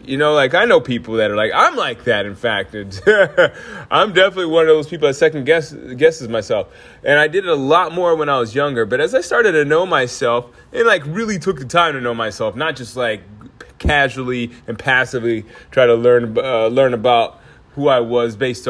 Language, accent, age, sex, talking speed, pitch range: English, American, 20-39, male, 220 wpm, 120-155 Hz